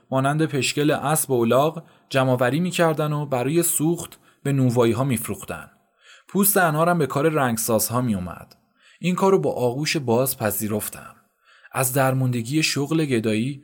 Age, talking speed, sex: 20-39, 130 wpm, male